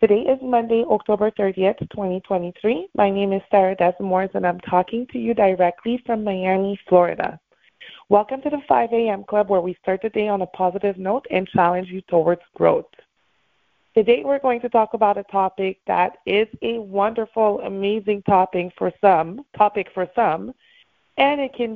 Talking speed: 170 wpm